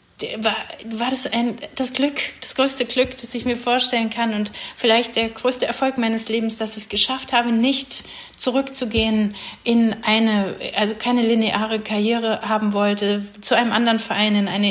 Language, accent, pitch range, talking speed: German, German, 210-235 Hz, 170 wpm